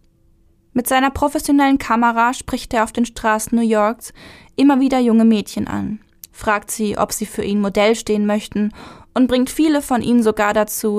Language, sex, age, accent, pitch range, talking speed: German, female, 10-29, German, 200-235 Hz, 175 wpm